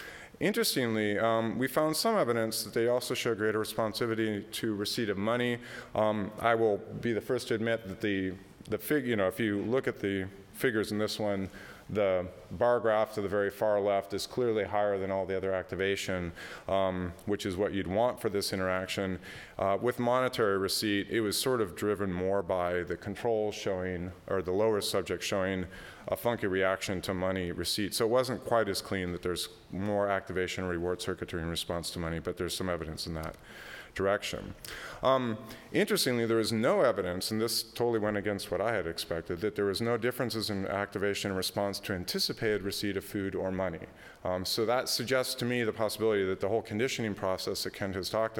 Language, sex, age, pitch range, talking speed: English, male, 30-49, 95-115 Hz, 200 wpm